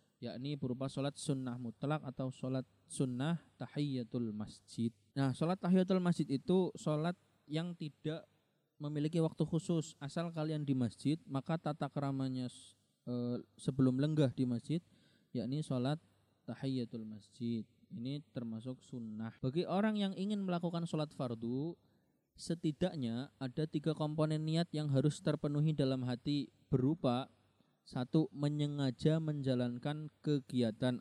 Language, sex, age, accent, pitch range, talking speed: Indonesian, male, 20-39, native, 125-155 Hz, 120 wpm